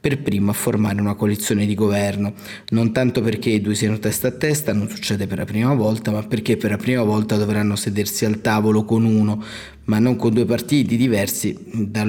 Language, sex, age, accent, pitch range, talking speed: Italian, male, 20-39, native, 105-115 Hz, 210 wpm